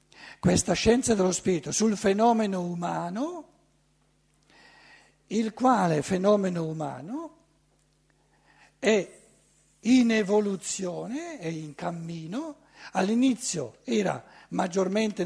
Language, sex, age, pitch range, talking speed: Italian, male, 60-79, 175-240 Hz, 80 wpm